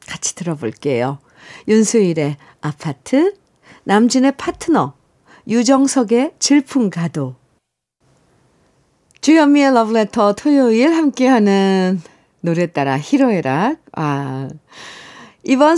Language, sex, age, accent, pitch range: Korean, female, 50-69, native, 180-270 Hz